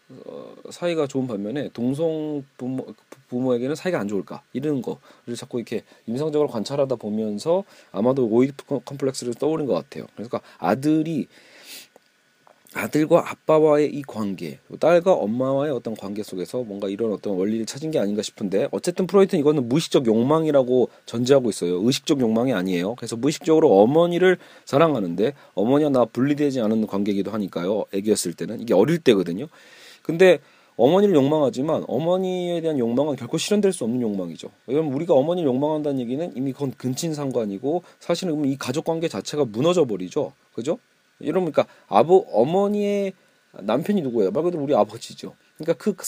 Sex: male